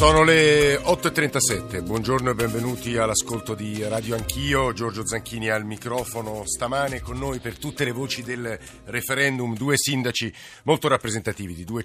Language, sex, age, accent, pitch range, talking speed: Italian, male, 50-69, native, 95-115 Hz, 145 wpm